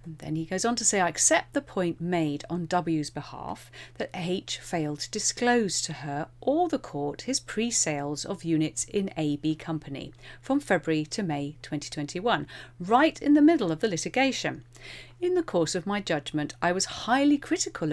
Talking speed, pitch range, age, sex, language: 180 wpm, 150-205 Hz, 40-59, female, English